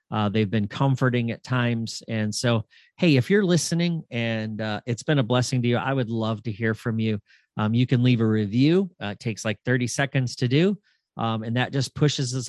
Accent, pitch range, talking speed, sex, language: American, 115-145 Hz, 225 wpm, male, English